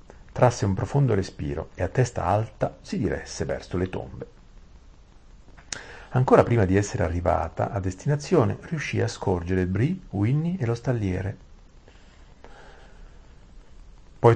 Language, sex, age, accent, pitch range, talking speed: Italian, male, 40-59, native, 90-110 Hz, 120 wpm